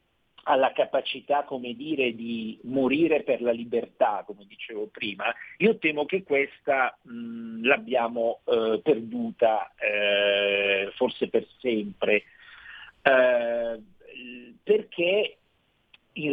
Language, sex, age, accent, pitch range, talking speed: Italian, male, 50-69, native, 110-150 Hz, 100 wpm